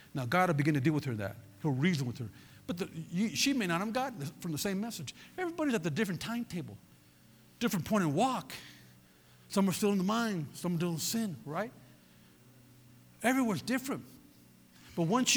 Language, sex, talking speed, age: English, male, 195 wpm, 50-69